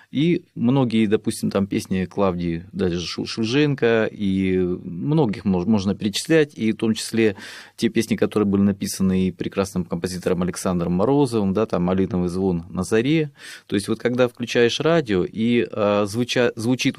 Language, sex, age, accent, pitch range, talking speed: Russian, male, 30-49, native, 95-120 Hz, 135 wpm